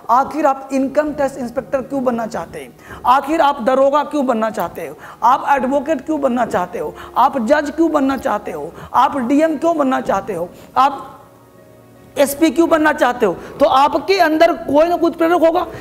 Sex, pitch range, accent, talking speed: female, 265-315 Hz, native, 180 wpm